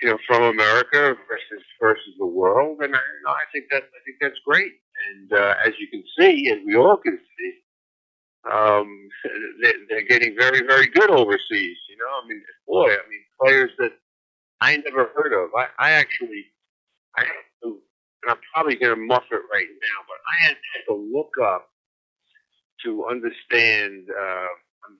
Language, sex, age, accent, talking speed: English, male, 50-69, American, 180 wpm